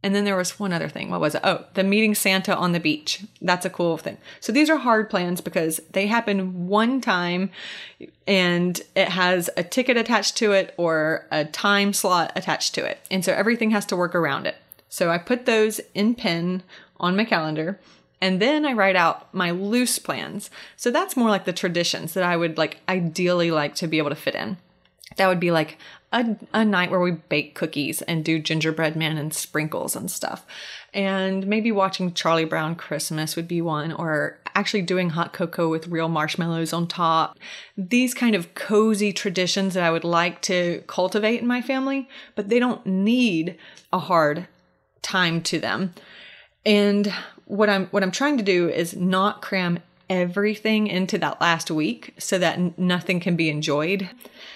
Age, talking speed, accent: 30-49, 190 wpm, American